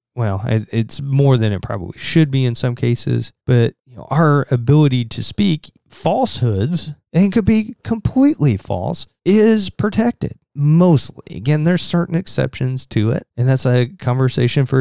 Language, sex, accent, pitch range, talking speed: English, male, American, 120-160 Hz, 145 wpm